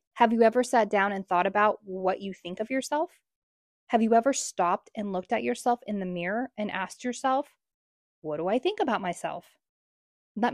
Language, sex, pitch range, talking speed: English, female, 185-230 Hz, 195 wpm